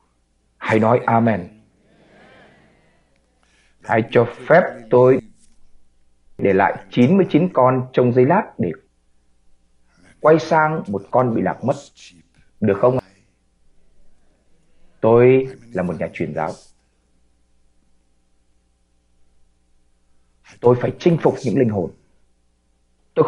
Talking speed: 100 wpm